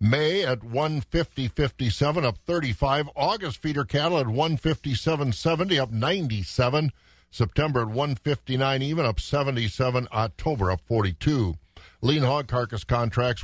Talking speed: 170 wpm